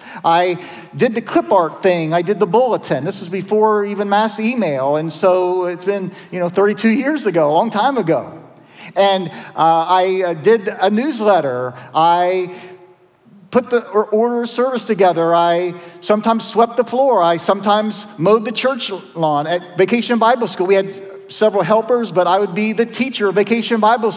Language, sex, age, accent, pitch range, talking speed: English, male, 40-59, American, 190-235 Hz, 175 wpm